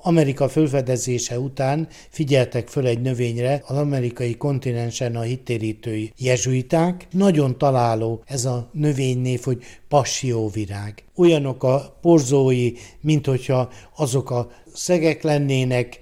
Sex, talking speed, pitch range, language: male, 110 wpm, 125-155 Hz, Hungarian